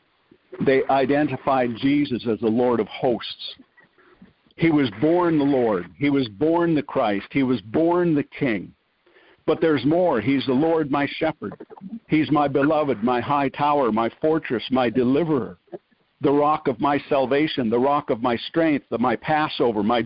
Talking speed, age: 160 wpm, 60-79